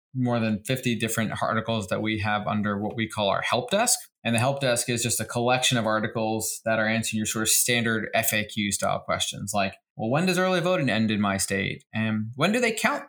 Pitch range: 105-120 Hz